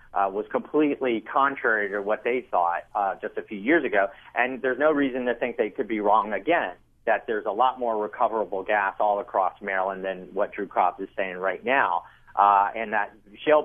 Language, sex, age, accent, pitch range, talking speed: English, male, 40-59, American, 100-130 Hz, 205 wpm